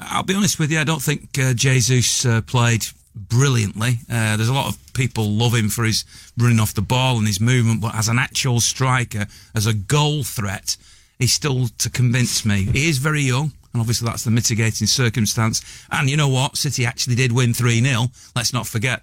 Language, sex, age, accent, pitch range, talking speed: English, male, 40-59, British, 105-130 Hz, 210 wpm